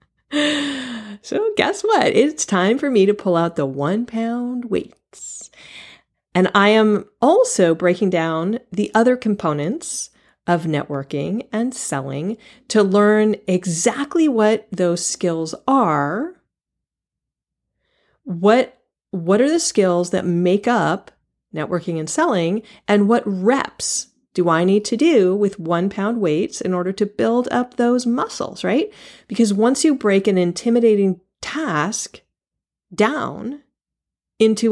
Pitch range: 175-240 Hz